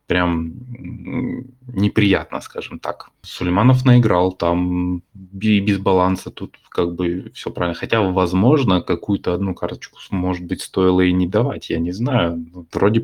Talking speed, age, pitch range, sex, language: 140 wpm, 20-39, 85-105 Hz, male, Russian